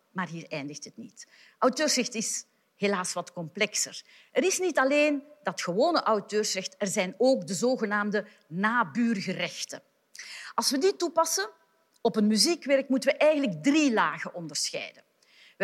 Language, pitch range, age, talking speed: Dutch, 195-265 Hz, 40-59, 140 wpm